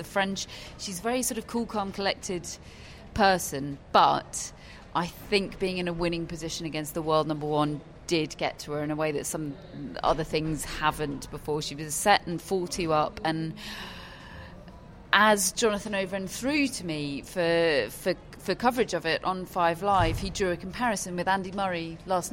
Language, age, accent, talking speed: English, 30-49, British, 180 wpm